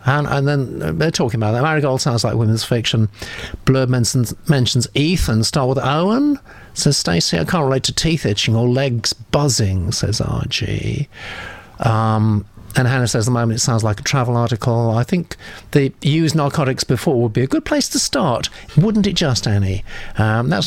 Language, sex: English, male